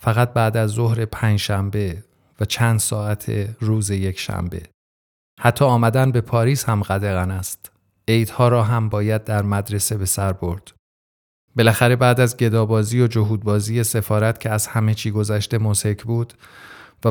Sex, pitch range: male, 100-120 Hz